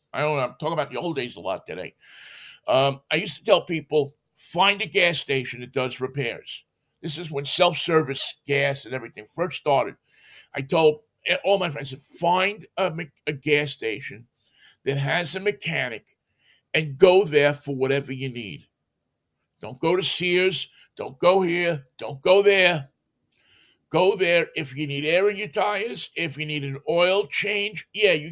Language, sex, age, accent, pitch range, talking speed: English, male, 50-69, American, 140-175 Hz, 175 wpm